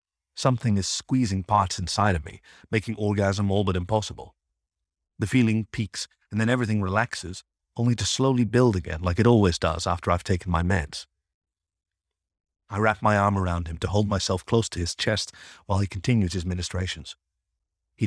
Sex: male